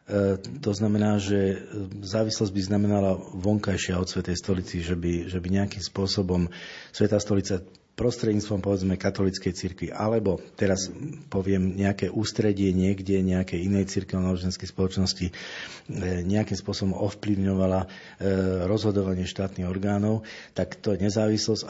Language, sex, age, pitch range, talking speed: Slovak, male, 40-59, 95-105 Hz, 120 wpm